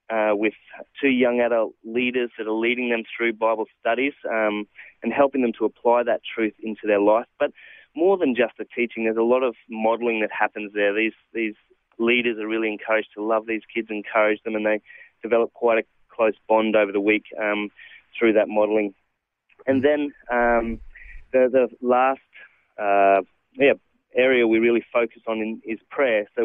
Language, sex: English, male